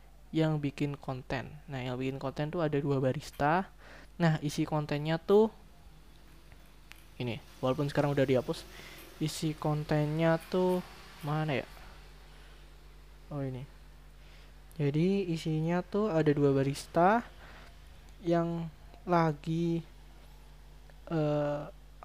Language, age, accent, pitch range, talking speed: Indonesian, 20-39, native, 130-165 Hz, 100 wpm